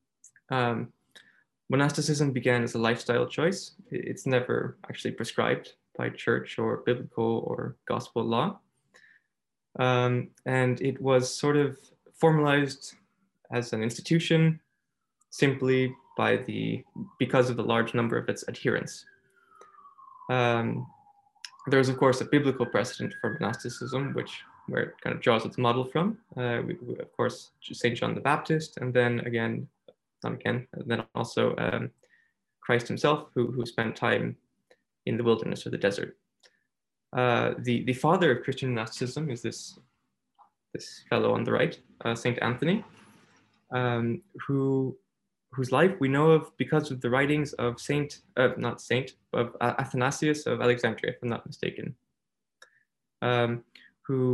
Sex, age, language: male, 20-39, English